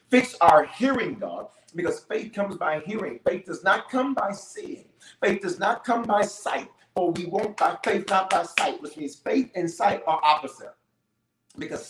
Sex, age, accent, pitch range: male, 40-59, American, 160-250 Hz